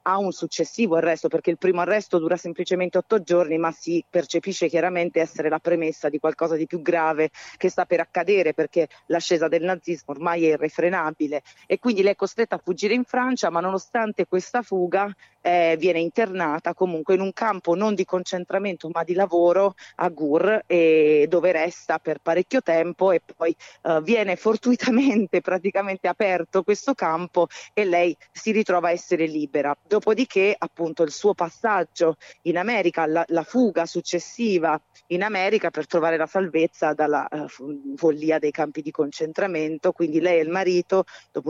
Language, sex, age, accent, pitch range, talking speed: Italian, female, 30-49, native, 165-195 Hz, 165 wpm